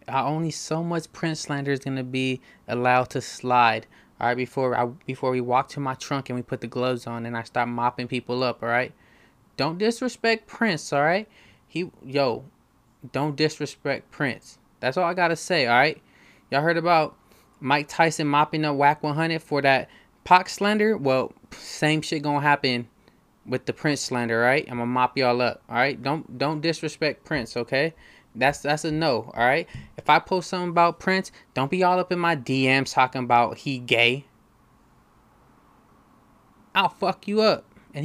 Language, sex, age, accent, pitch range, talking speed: English, male, 20-39, American, 125-160 Hz, 175 wpm